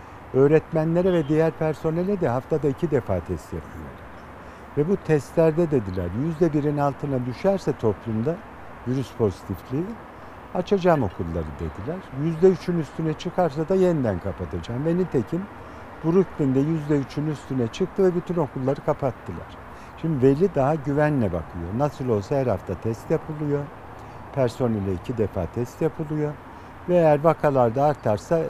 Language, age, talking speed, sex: Turkish, 60-79, 125 wpm, male